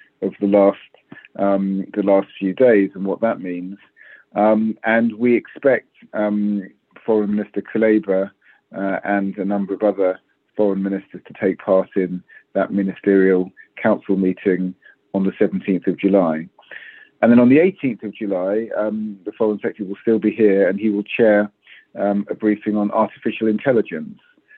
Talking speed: 160 wpm